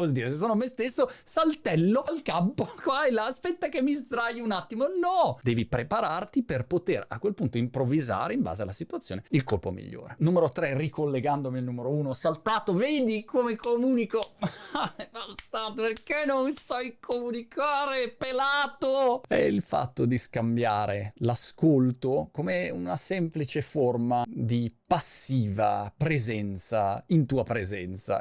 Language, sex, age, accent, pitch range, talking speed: Italian, male, 30-49, native, 115-190 Hz, 140 wpm